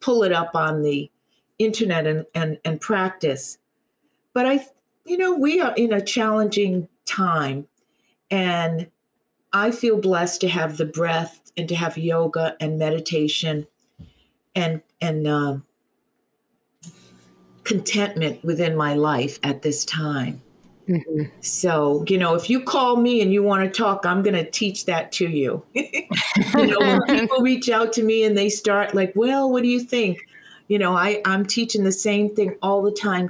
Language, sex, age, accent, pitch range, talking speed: English, female, 50-69, American, 165-225 Hz, 160 wpm